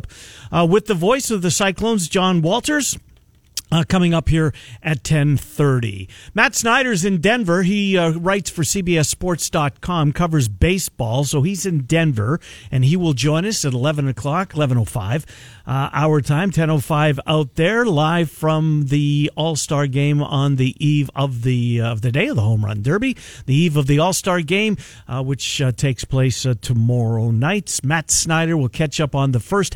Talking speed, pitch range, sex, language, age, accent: 175 wpm, 130-175 Hz, male, English, 50-69, American